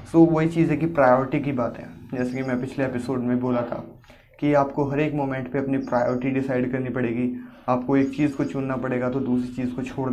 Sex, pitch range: male, 120-135 Hz